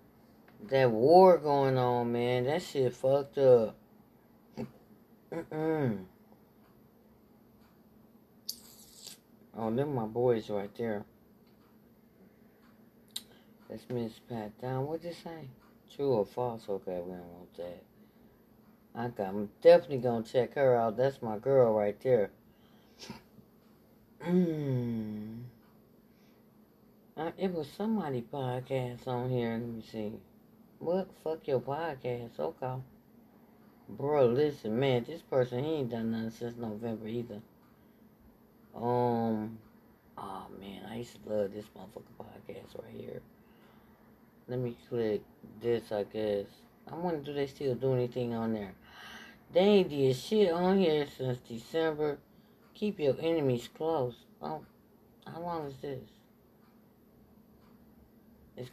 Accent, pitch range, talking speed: American, 115-160 Hz, 120 wpm